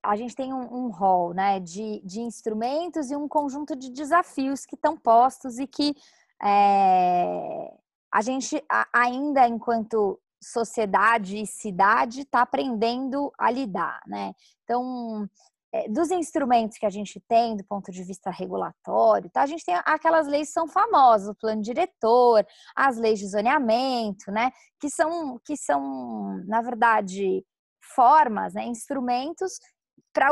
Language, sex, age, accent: Portuguese, female, 20-39, Brazilian